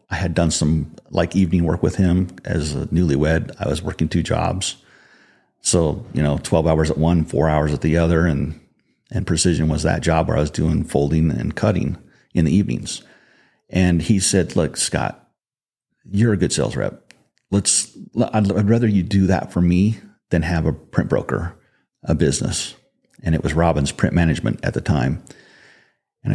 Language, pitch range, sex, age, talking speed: English, 80-100 Hz, male, 50-69, 180 wpm